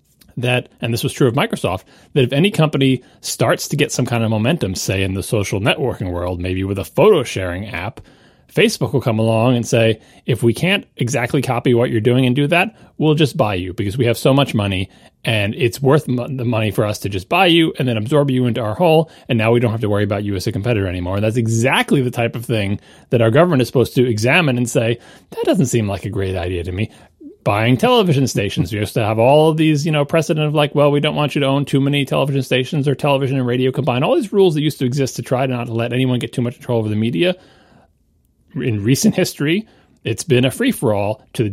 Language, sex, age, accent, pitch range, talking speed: English, male, 30-49, American, 110-145 Hz, 255 wpm